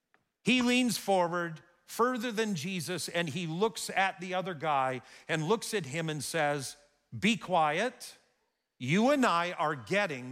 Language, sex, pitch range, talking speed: English, male, 110-160 Hz, 150 wpm